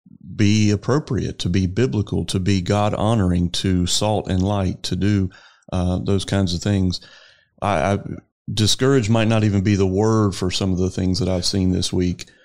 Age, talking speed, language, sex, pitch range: 30-49, 185 wpm, English, male, 95-105 Hz